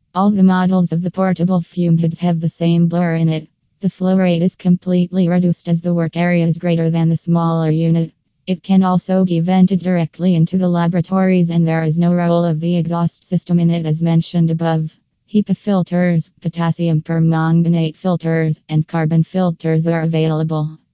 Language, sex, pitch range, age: English, female, 165-180 Hz, 20-39